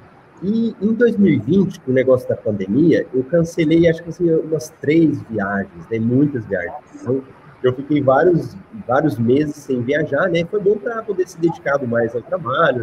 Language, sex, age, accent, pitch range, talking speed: Portuguese, male, 30-49, Brazilian, 140-210 Hz, 175 wpm